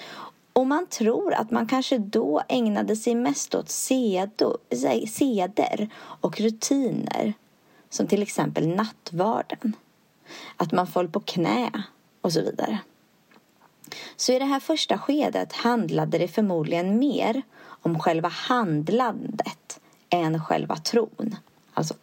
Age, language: 30-49, Swedish